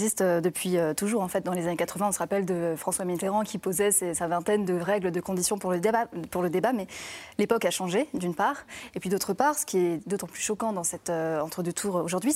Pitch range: 175-220 Hz